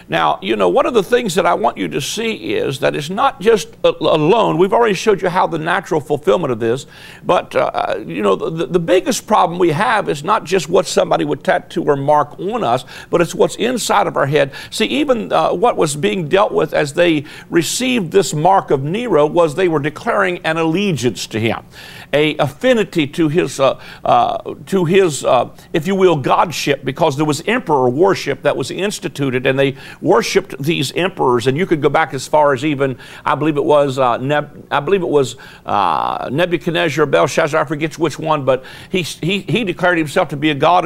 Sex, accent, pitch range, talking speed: male, American, 150-190 Hz, 210 wpm